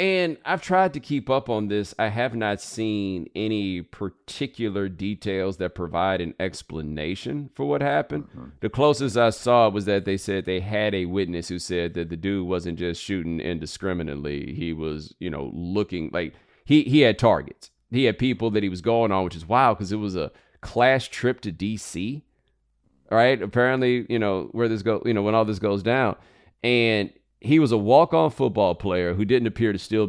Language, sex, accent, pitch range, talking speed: English, male, American, 95-120 Hz, 195 wpm